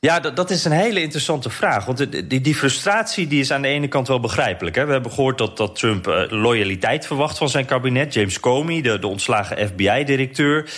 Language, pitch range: Dutch, 115-155 Hz